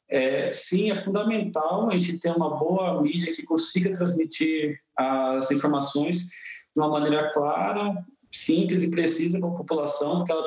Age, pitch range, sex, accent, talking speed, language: 40-59, 165-210 Hz, male, Brazilian, 155 wpm, Portuguese